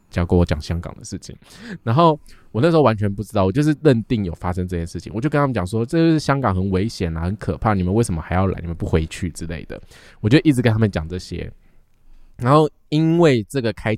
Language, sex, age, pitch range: Chinese, male, 20-39, 95-125 Hz